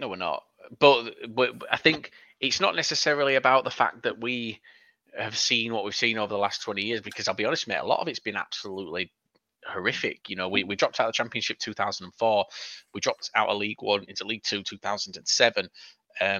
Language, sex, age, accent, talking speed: English, male, 20-39, British, 210 wpm